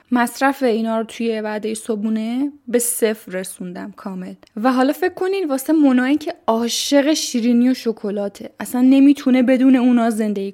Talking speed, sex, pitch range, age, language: 150 wpm, female, 215-255 Hz, 10-29, Persian